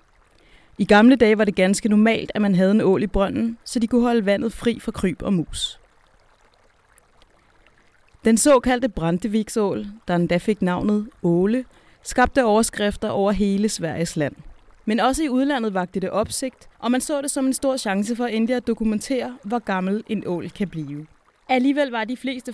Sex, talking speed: female, 180 wpm